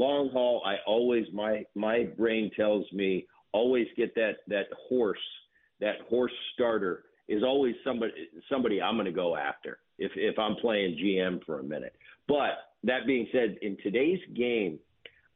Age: 50-69